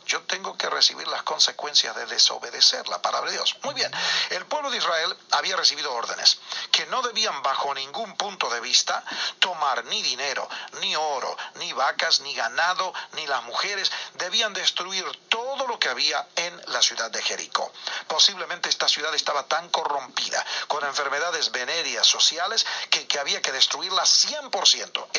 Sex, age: male, 40-59